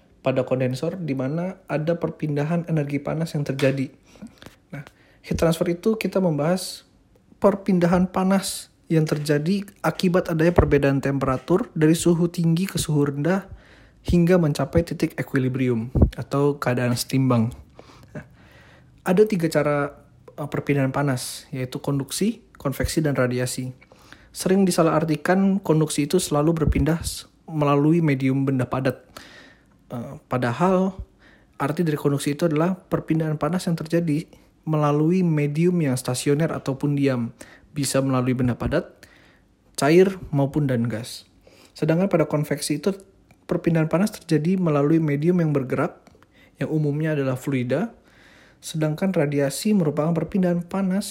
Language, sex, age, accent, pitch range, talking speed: Indonesian, male, 20-39, native, 135-170 Hz, 120 wpm